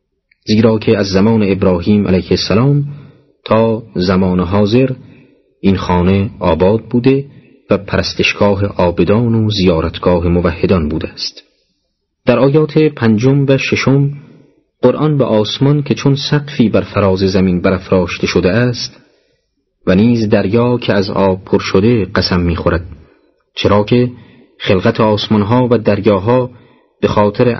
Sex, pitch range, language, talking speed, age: male, 95-130 Hz, Persian, 125 wpm, 40-59